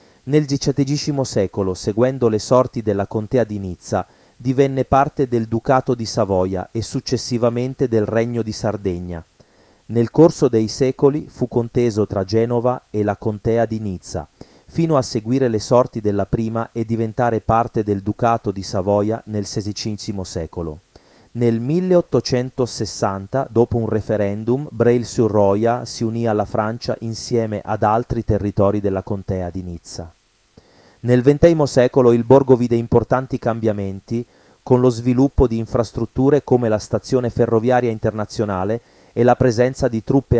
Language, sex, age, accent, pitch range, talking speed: Italian, male, 30-49, native, 110-125 Hz, 140 wpm